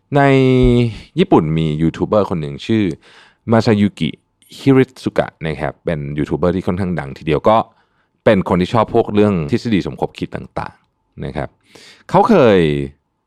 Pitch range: 75-105 Hz